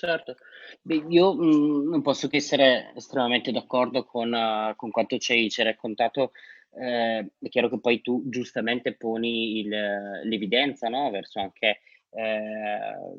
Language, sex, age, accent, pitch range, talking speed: Italian, male, 20-39, native, 110-130 Hz, 140 wpm